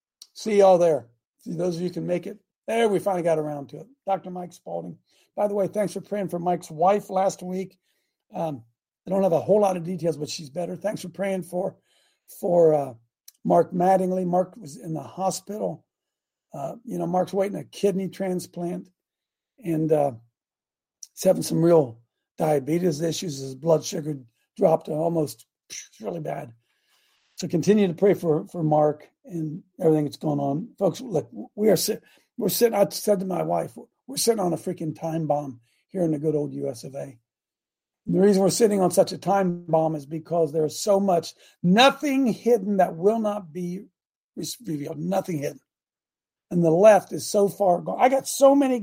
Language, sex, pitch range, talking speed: English, male, 160-200 Hz, 190 wpm